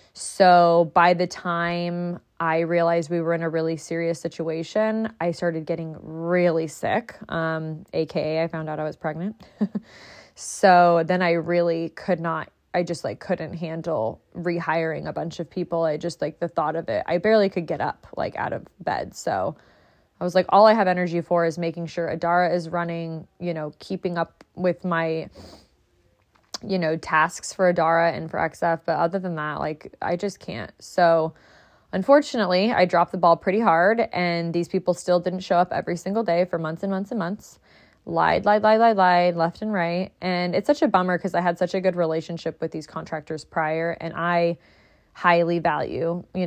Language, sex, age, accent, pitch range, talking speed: English, female, 20-39, American, 165-185 Hz, 190 wpm